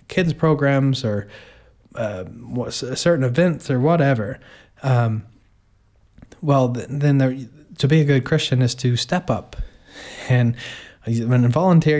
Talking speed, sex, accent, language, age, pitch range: 110 wpm, male, American, English, 20-39, 110-135 Hz